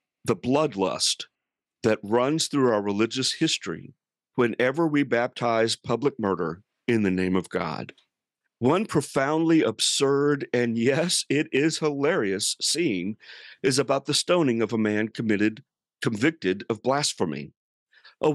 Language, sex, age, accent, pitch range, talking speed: English, male, 50-69, American, 110-160 Hz, 130 wpm